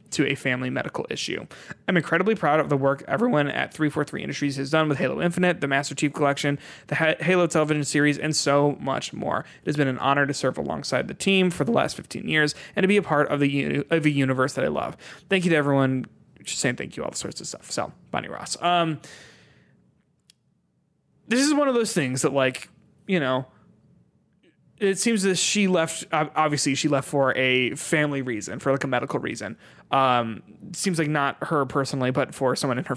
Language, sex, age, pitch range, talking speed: English, male, 20-39, 135-170 Hz, 210 wpm